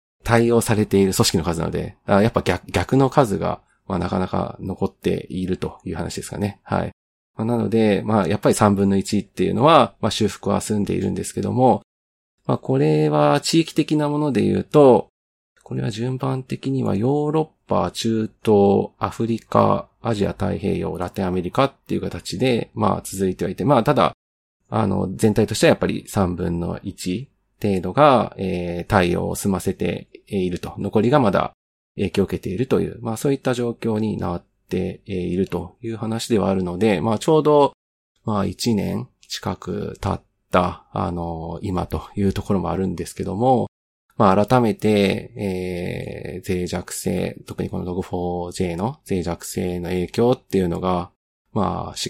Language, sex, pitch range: Japanese, male, 90-115 Hz